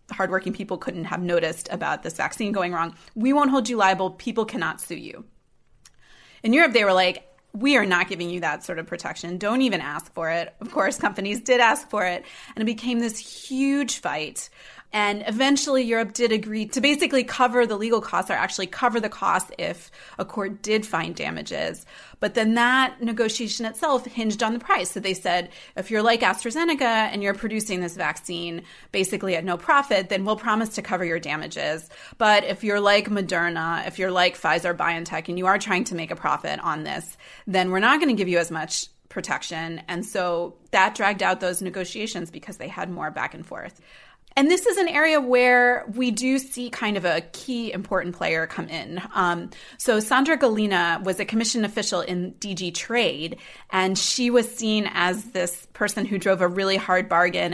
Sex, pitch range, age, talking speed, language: female, 175-235 Hz, 30-49, 195 wpm, English